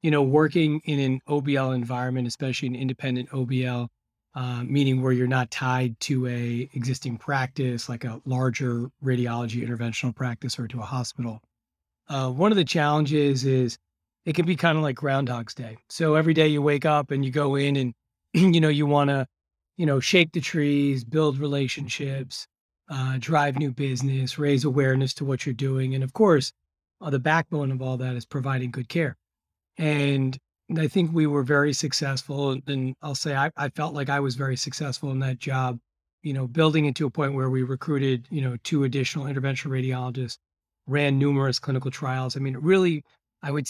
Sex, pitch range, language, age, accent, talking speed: male, 130-145 Hz, English, 40-59, American, 190 wpm